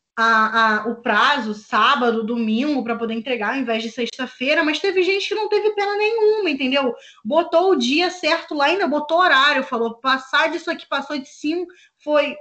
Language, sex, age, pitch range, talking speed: Portuguese, female, 20-39, 225-295 Hz, 190 wpm